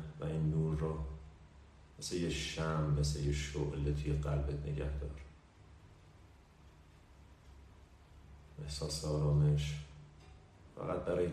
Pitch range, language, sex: 75-80 Hz, Persian, male